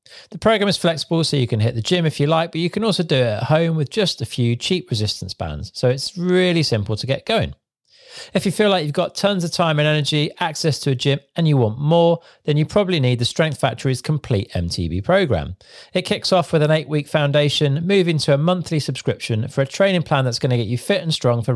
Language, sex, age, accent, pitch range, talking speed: English, male, 40-59, British, 125-170 Hz, 250 wpm